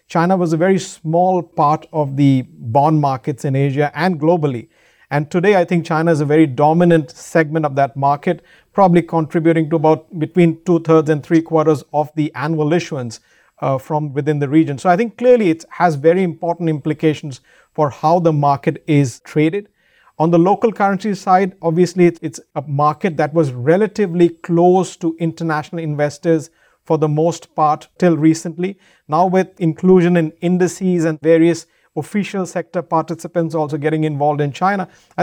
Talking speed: 165 wpm